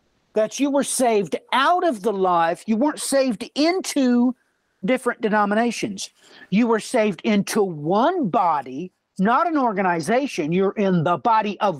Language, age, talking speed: English, 60-79, 140 wpm